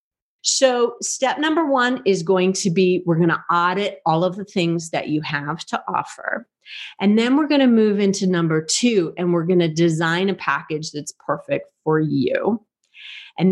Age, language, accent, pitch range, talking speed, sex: 40-59, English, American, 165-200 Hz, 185 wpm, female